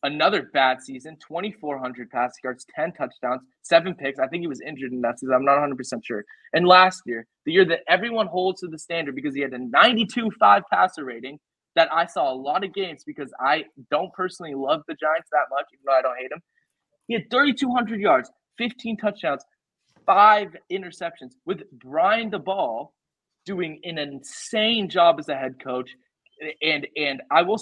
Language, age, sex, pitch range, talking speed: English, 20-39, male, 135-205 Hz, 185 wpm